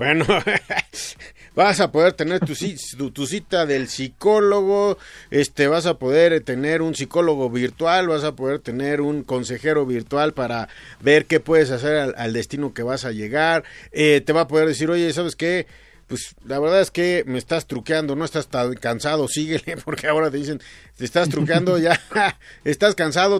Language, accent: Spanish, Mexican